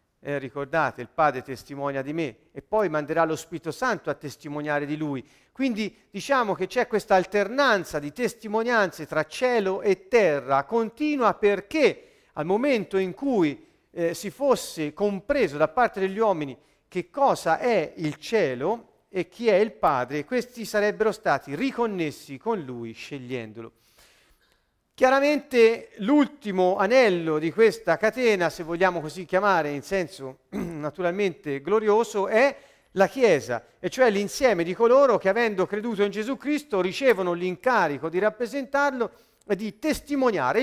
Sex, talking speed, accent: male, 140 wpm, native